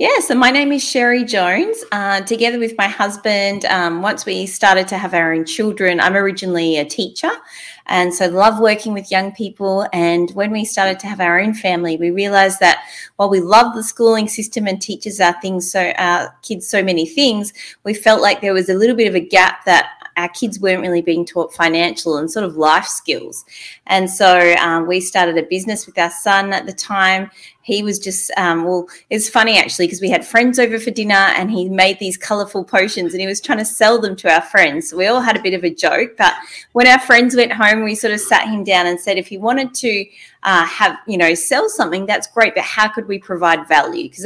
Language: English